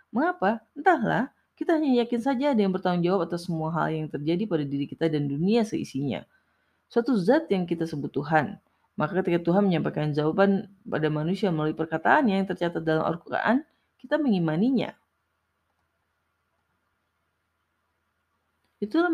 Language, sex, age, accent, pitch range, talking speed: Indonesian, female, 30-49, native, 155-215 Hz, 135 wpm